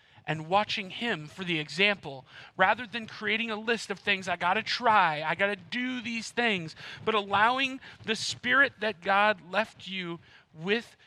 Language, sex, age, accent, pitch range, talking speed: English, male, 40-59, American, 175-230 Hz, 165 wpm